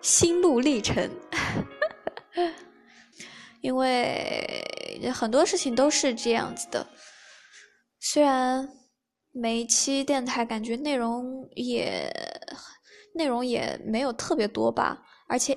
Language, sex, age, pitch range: Chinese, female, 10-29, 230-290 Hz